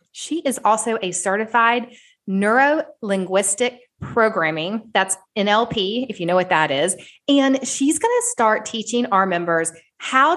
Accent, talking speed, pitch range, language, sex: American, 145 wpm, 185-245 Hz, English, female